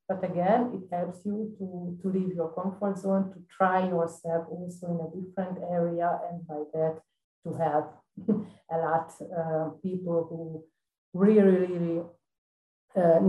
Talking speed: 145 wpm